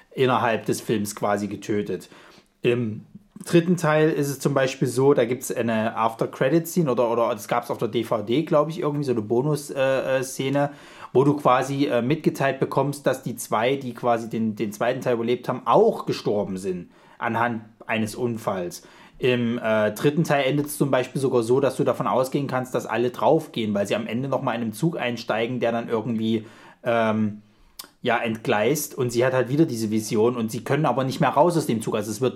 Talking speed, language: 200 wpm, German